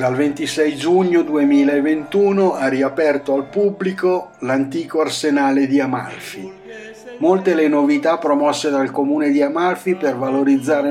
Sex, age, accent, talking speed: male, 60-79, native, 120 wpm